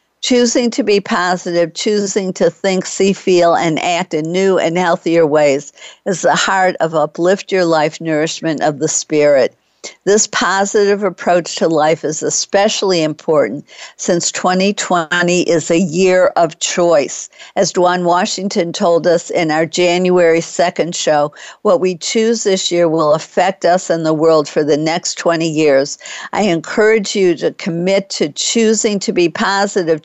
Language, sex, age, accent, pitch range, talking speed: English, female, 60-79, American, 165-195 Hz, 155 wpm